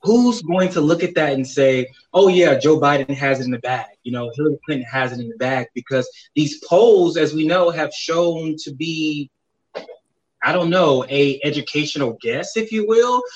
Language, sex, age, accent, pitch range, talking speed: English, male, 20-39, American, 130-170 Hz, 200 wpm